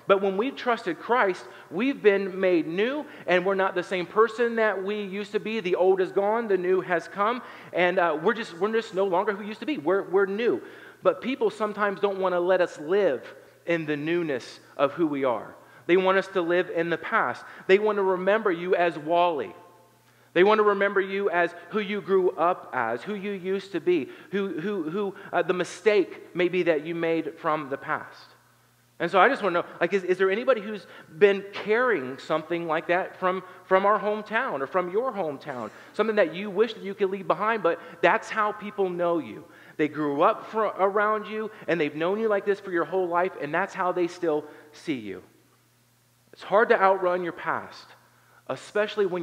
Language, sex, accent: English, male, American